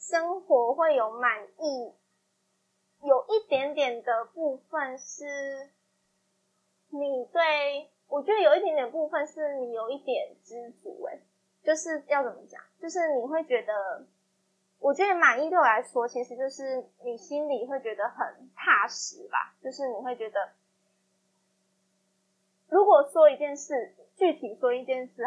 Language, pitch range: Chinese, 230-315 Hz